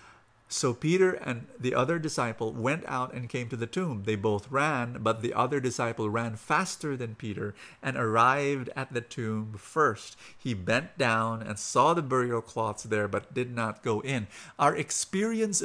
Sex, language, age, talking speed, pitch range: male, English, 50-69, 175 wpm, 115-145 Hz